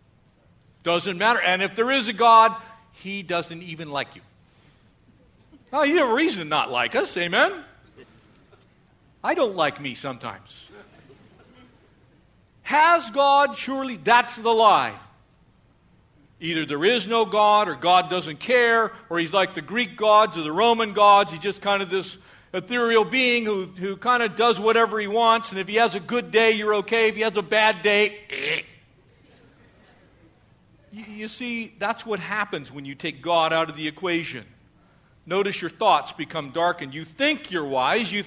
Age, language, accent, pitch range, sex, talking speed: 50-69, English, American, 165-235 Hz, male, 170 wpm